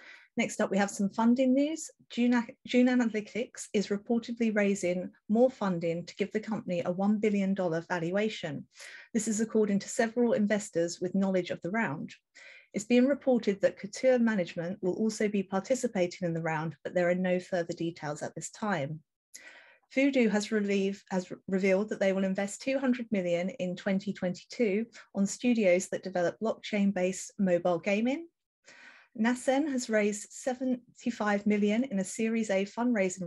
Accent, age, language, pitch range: British, 30-49, English, 185-235 Hz